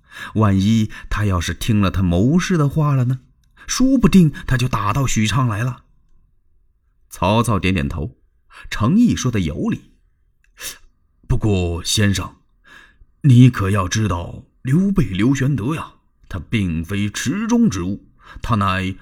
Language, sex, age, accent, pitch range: Chinese, male, 30-49, native, 95-135 Hz